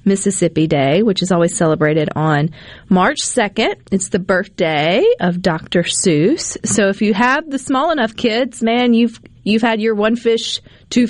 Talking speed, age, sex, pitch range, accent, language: 170 wpm, 40-59, female, 165-215 Hz, American, English